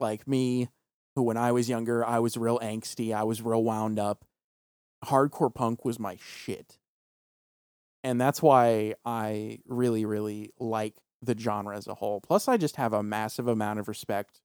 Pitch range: 105-125 Hz